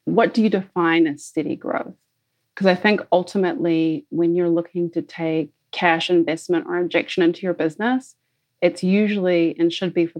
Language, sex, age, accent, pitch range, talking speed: English, female, 30-49, American, 160-185 Hz, 170 wpm